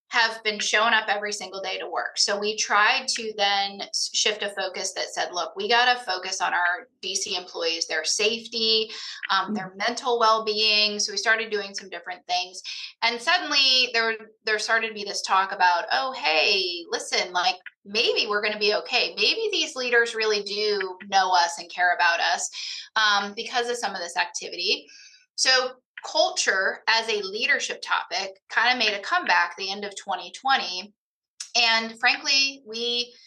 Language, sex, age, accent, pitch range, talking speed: English, female, 20-39, American, 200-250 Hz, 175 wpm